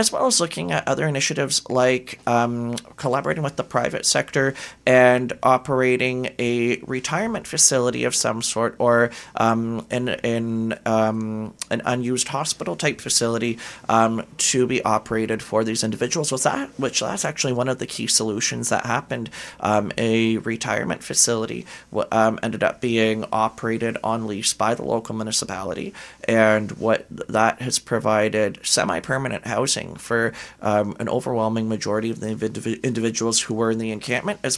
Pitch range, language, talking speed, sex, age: 110-125 Hz, English, 150 wpm, male, 30-49